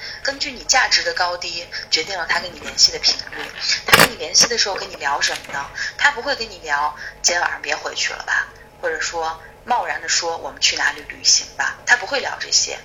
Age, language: 20-39, Chinese